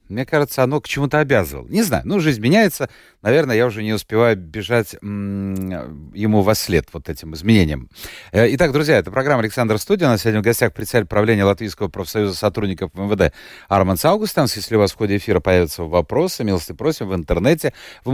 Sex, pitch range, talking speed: male, 95-135 Hz, 185 wpm